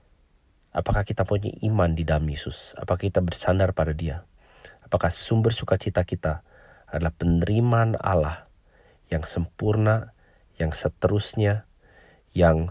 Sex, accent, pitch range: male, Indonesian, 80-100 Hz